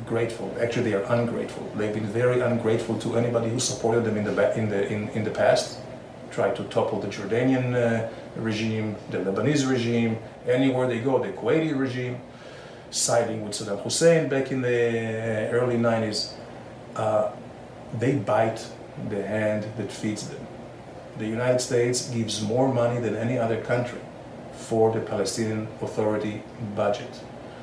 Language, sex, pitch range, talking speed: English, male, 105-125 Hz, 150 wpm